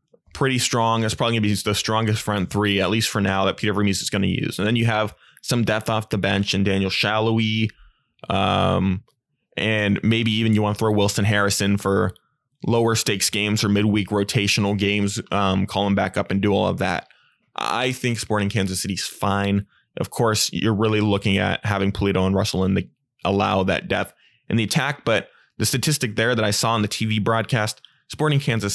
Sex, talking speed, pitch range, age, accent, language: male, 205 wpm, 100-115 Hz, 20-39, American, English